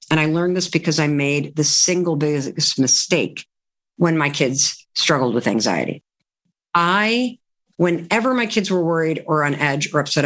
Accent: American